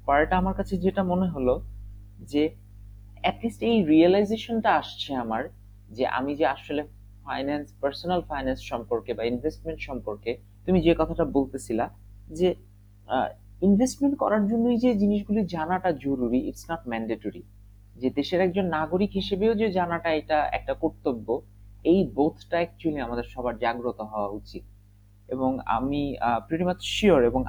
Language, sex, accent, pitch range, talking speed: Bengali, male, native, 100-145 Hz, 60 wpm